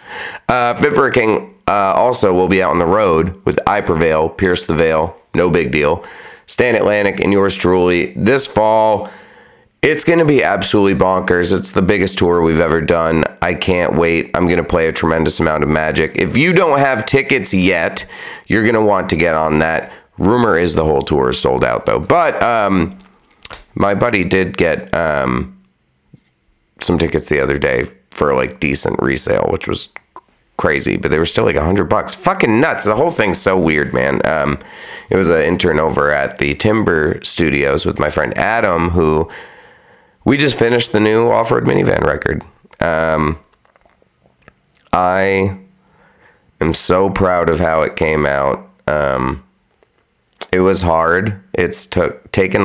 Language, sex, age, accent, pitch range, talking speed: English, male, 30-49, American, 80-100 Hz, 170 wpm